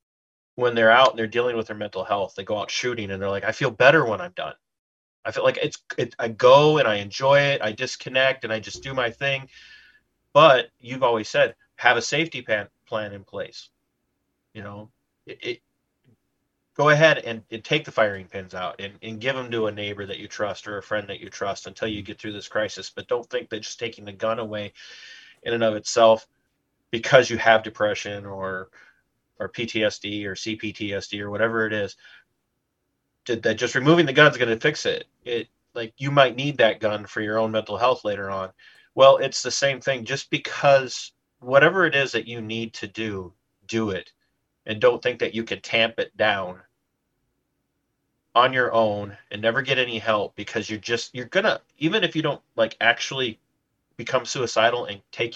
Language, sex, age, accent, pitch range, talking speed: English, male, 30-49, American, 105-135 Hz, 205 wpm